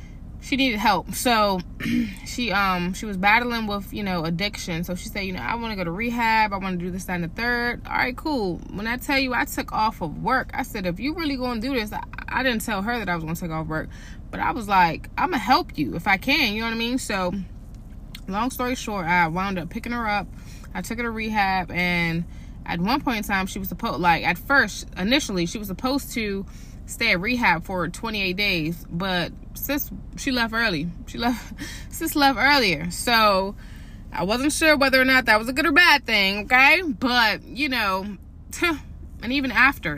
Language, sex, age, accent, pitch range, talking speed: English, female, 20-39, American, 185-250 Hz, 225 wpm